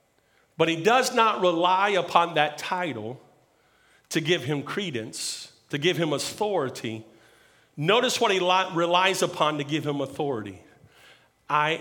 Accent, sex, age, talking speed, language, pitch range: American, male, 50-69, 130 wpm, English, 165-245 Hz